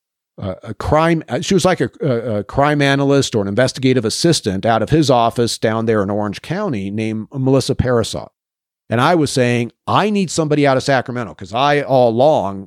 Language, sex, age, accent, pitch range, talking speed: English, male, 40-59, American, 115-150 Hz, 190 wpm